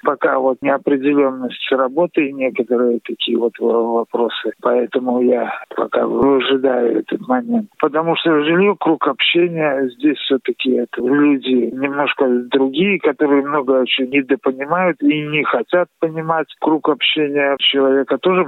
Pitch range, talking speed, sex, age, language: 130-165 Hz, 125 wpm, male, 50-69, Russian